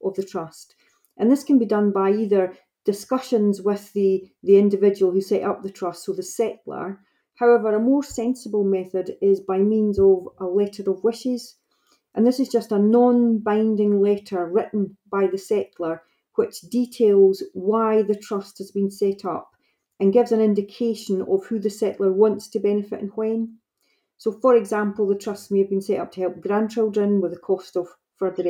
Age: 40-59